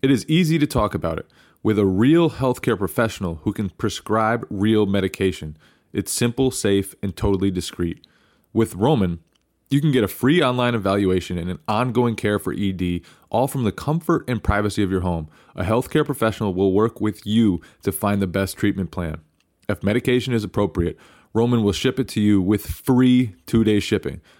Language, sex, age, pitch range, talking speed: English, male, 20-39, 95-115 Hz, 180 wpm